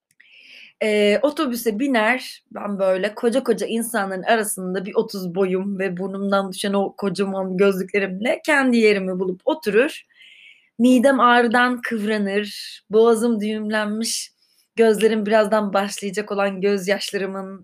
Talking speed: 110 wpm